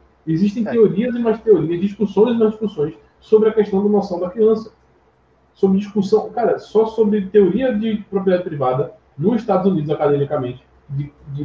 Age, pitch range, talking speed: 20-39, 145-210 Hz, 160 wpm